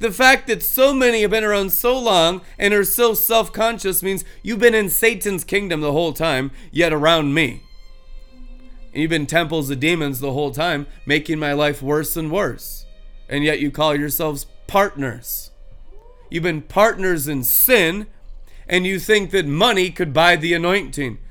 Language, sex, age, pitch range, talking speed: English, male, 30-49, 145-190 Hz, 170 wpm